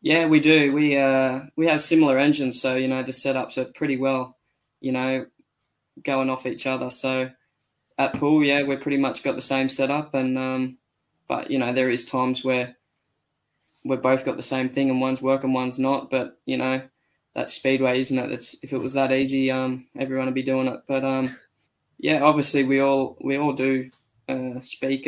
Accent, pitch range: Australian, 130-140 Hz